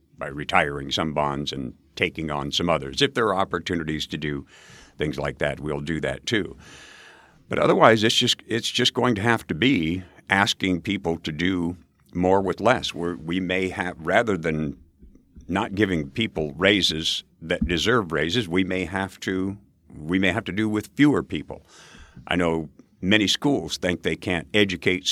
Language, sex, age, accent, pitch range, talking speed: English, male, 50-69, American, 80-110 Hz, 175 wpm